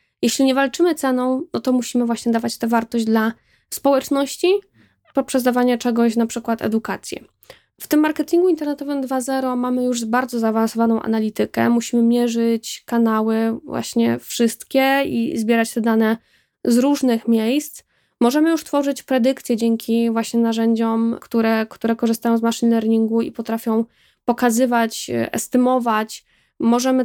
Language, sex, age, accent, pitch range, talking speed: Polish, female, 10-29, native, 230-265 Hz, 130 wpm